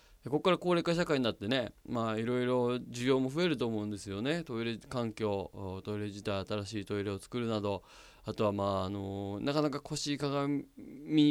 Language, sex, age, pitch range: Japanese, male, 20-39, 105-140 Hz